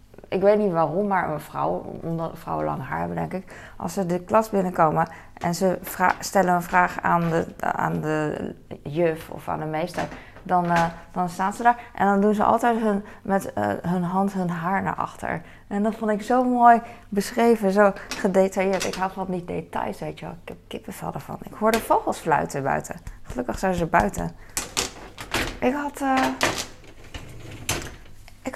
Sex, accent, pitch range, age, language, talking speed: female, Dutch, 175-210 Hz, 20-39, Dutch, 185 wpm